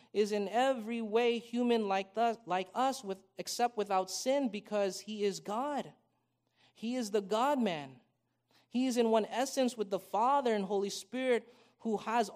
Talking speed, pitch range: 155 wpm, 170-220 Hz